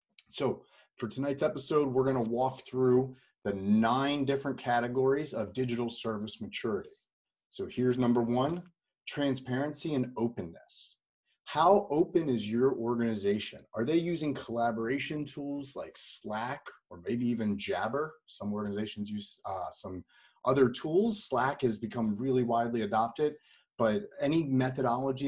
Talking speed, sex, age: 135 wpm, male, 30-49